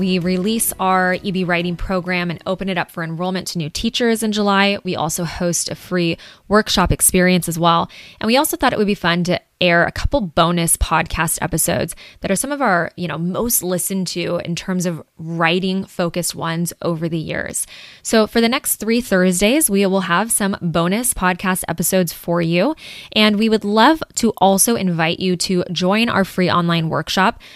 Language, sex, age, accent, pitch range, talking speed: English, female, 20-39, American, 175-205 Hz, 195 wpm